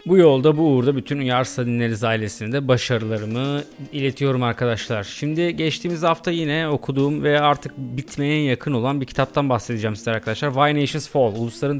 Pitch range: 115-150 Hz